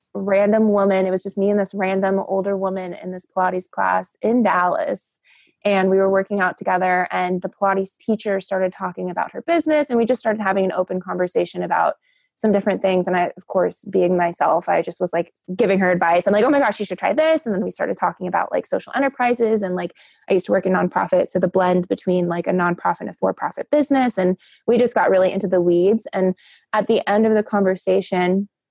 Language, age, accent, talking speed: English, 20-39, American, 230 wpm